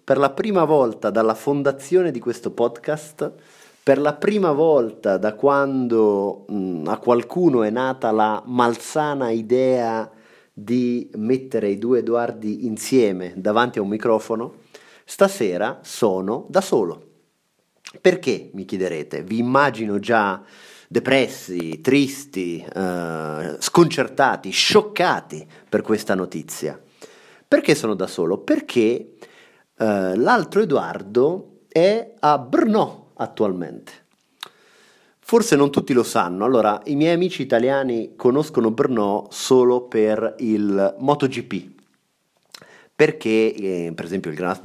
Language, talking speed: Italian, 110 wpm